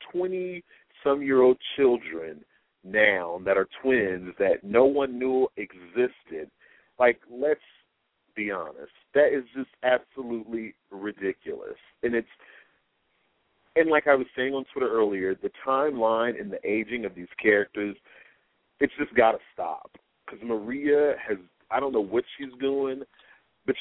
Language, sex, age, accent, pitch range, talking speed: English, male, 40-59, American, 105-150 Hz, 140 wpm